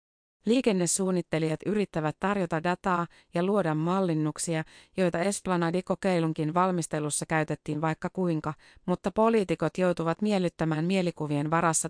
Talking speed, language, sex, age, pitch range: 95 wpm, Finnish, female, 30-49, 155-185 Hz